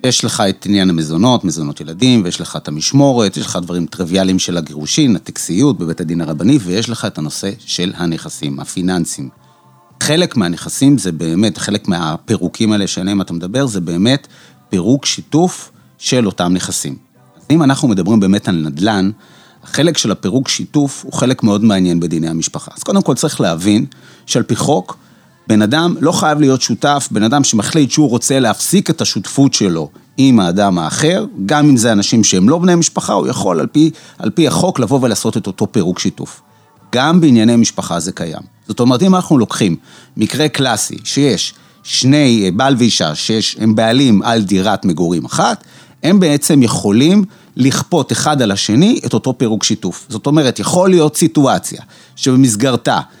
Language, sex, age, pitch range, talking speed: Hebrew, male, 30-49, 95-140 Hz, 165 wpm